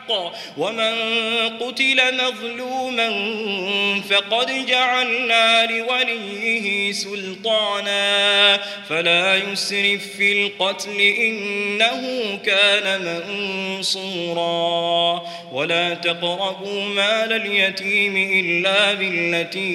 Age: 20-39